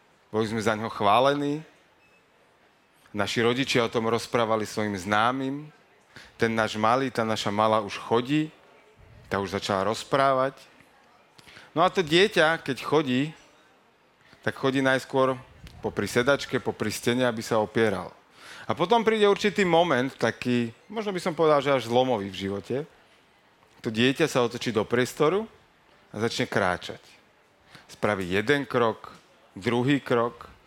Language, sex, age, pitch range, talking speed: Slovak, male, 30-49, 110-150 Hz, 135 wpm